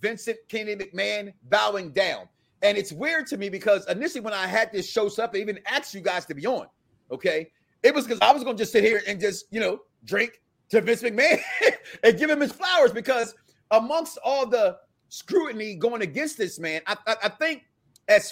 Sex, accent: male, American